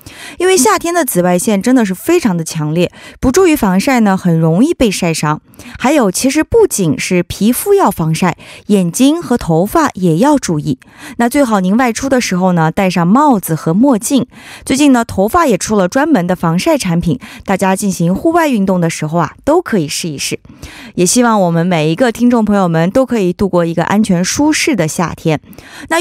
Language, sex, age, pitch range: Korean, female, 20-39, 175-255 Hz